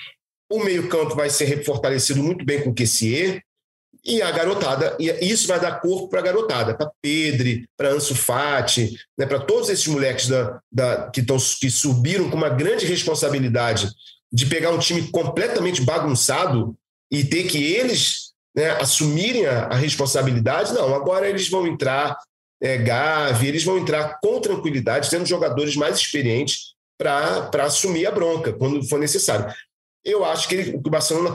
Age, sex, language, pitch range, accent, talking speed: 40-59, male, Portuguese, 130-175 Hz, Brazilian, 165 wpm